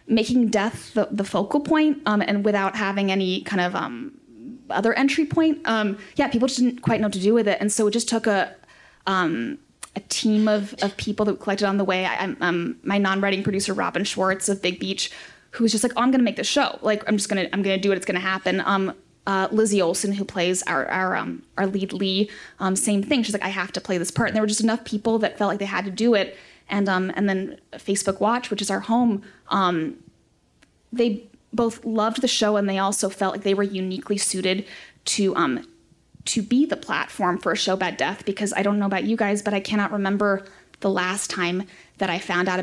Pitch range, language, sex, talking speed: 195-230 Hz, English, female, 245 wpm